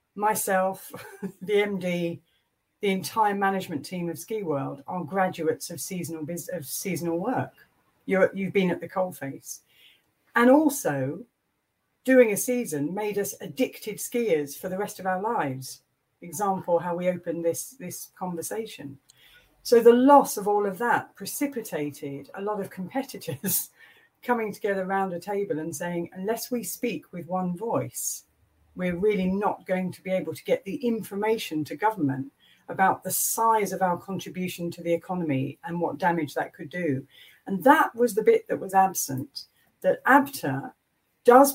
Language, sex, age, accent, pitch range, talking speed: English, female, 50-69, British, 170-215 Hz, 160 wpm